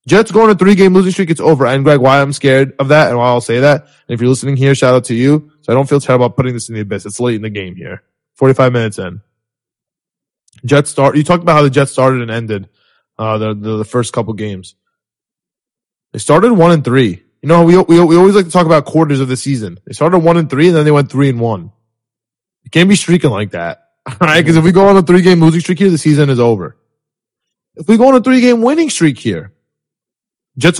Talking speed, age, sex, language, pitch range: 260 wpm, 20-39, male, English, 125-170 Hz